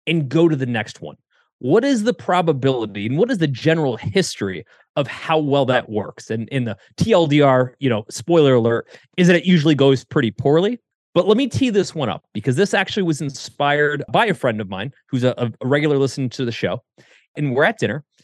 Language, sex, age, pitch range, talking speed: English, male, 30-49, 130-175 Hz, 215 wpm